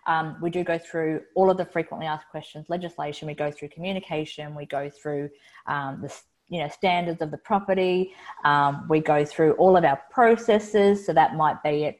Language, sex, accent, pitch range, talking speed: English, female, Australian, 155-195 Hz, 190 wpm